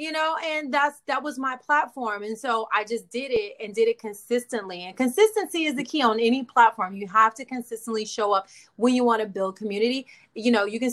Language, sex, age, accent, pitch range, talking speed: English, female, 30-49, American, 205-285 Hz, 230 wpm